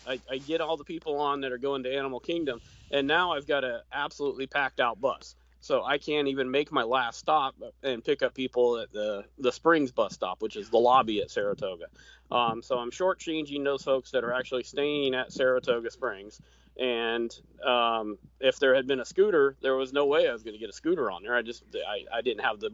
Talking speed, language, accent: 230 wpm, English, American